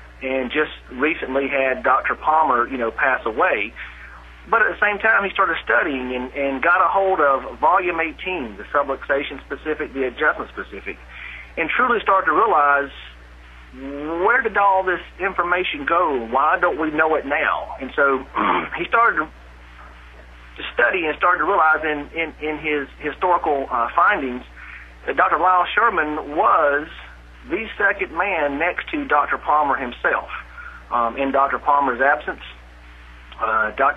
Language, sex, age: English, male, 40-59